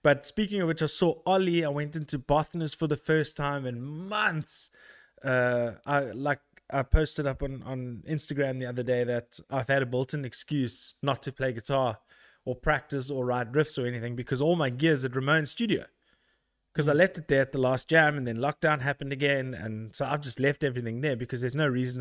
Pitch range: 130-160 Hz